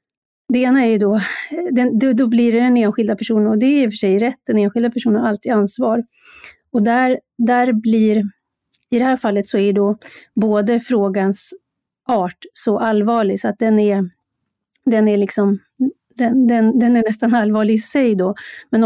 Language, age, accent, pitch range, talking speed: Swedish, 30-49, native, 205-235 Hz, 180 wpm